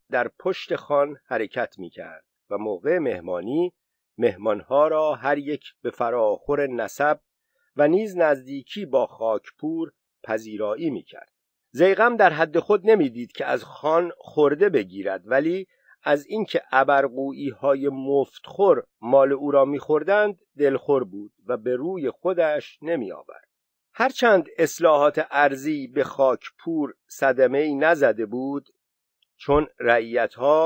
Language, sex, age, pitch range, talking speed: Persian, male, 50-69, 135-180 Hz, 115 wpm